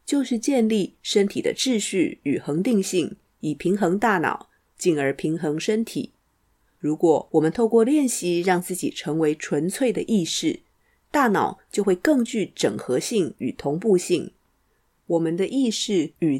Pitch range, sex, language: 165-225 Hz, female, Chinese